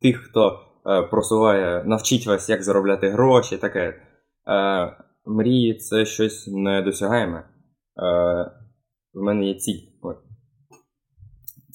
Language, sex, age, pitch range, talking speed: Ukrainian, male, 20-39, 95-110 Hz, 110 wpm